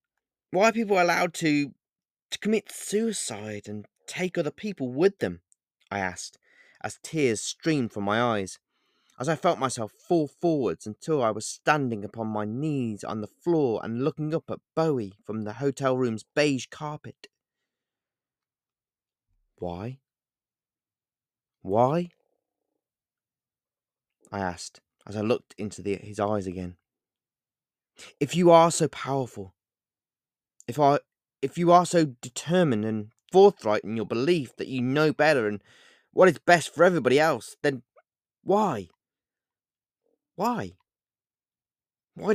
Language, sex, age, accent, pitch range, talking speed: English, male, 20-39, British, 110-180 Hz, 130 wpm